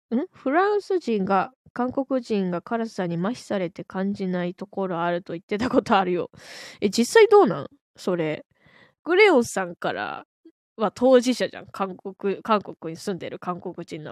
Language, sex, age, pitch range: Japanese, female, 10-29, 175-255 Hz